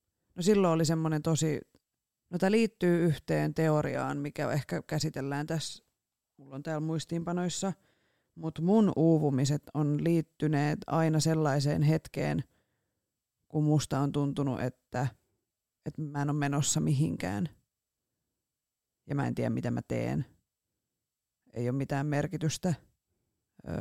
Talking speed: 120 wpm